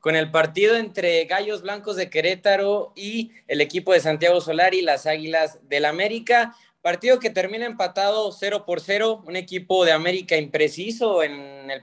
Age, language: 20-39, Spanish